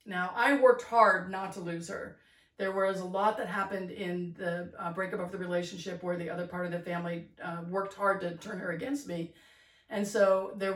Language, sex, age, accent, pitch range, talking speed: English, female, 40-59, American, 175-215 Hz, 220 wpm